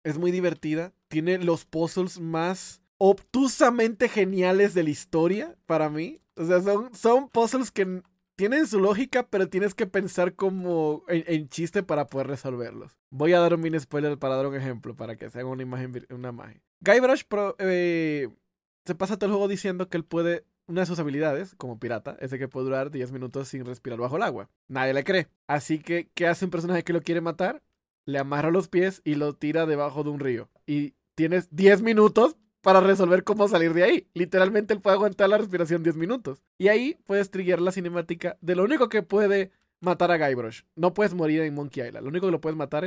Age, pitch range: 20-39, 145-195 Hz